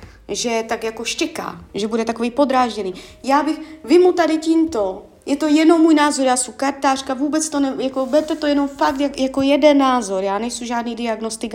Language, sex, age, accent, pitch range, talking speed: Czech, female, 30-49, native, 205-275 Hz, 190 wpm